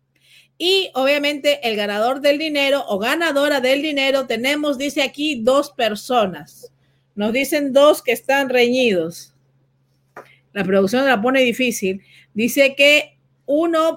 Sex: female